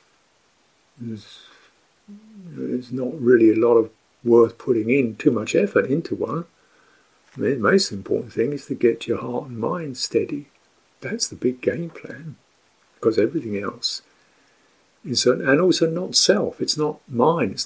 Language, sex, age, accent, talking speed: English, male, 50-69, British, 150 wpm